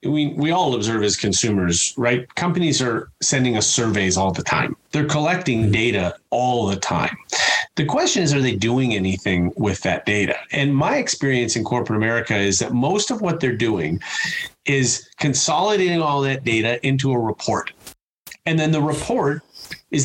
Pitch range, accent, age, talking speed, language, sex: 110-155 Hz, American, 30-49, 170 wpm, English, male